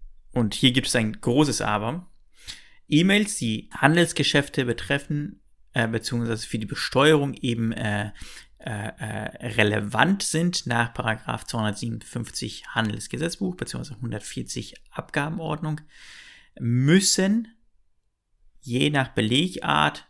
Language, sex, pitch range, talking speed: German, male, 110-145 Hz, 95 wpm